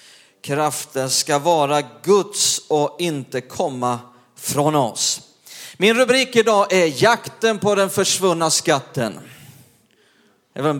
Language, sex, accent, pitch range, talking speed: Swedish, male, native, 135-175 Hz, 115 wpm